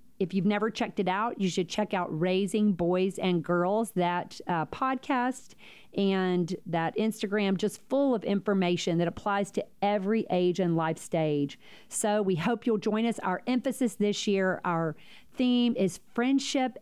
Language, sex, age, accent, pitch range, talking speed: English, female, 40-59, American, 185-235 Hz, 165 wpm